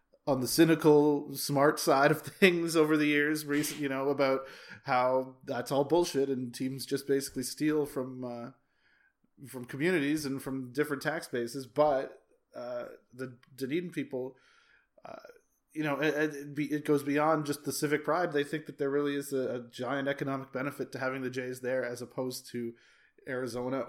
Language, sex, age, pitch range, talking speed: English, male, 20-39, 130-150 Hz, 175 wpm